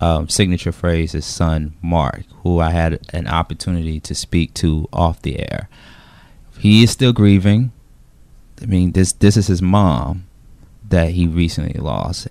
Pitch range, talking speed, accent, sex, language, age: 80-95 Hz, 155 wpm, American, male, English, 20-39